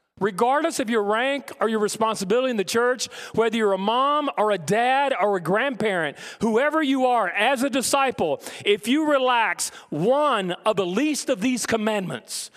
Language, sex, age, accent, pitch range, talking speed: English, male, 40-59, American, 210-260 Hz, 170 wpm